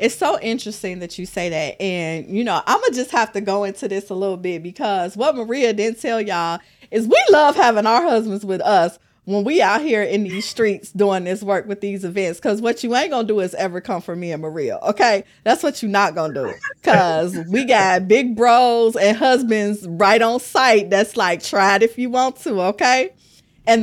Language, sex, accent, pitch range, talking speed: English, female, American, 170-215 Hz, 230 wpm